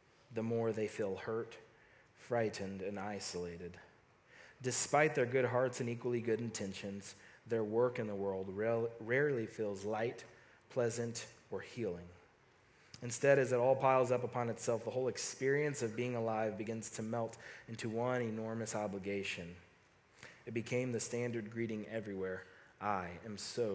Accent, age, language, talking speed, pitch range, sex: American, 30-49, English, 145 wpm, 105-125 Hz, male